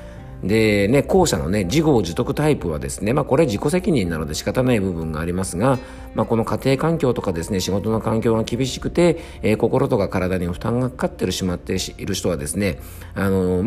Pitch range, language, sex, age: 90-130 Hz, Japanese, male, 40-59